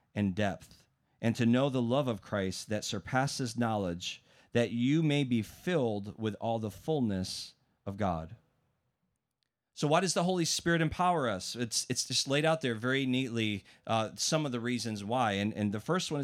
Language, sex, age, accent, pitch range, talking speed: English, male, 30-49, American, 125-170 Hz, 185 wpm